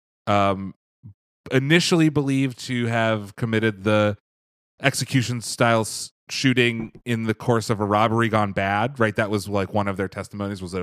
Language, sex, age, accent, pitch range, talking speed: English, male, 30-49, American, 100-130 Hz, 145 wpm